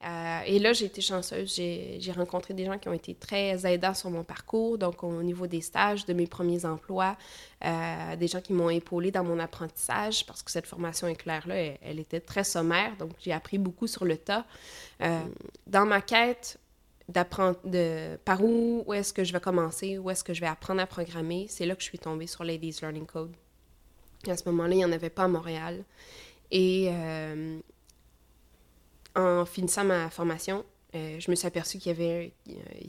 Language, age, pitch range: French, 20-39, 170-195 Hz